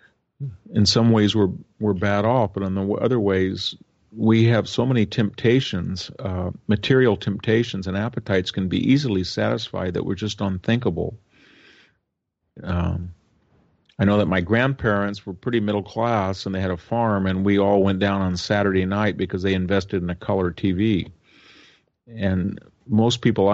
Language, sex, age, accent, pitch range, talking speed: English, male, 50-69, American, 95-115 Hz, 160 wpm